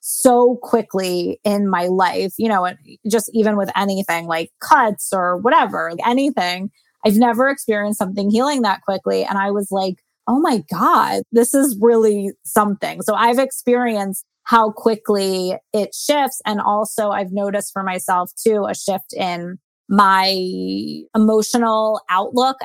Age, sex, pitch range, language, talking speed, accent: 20-39, female, 195-245 Hz, English, 145 wpm, American